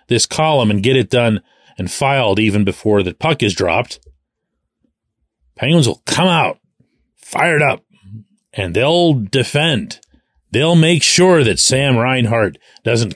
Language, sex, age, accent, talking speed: English, male, 40-59, American, 135 wpm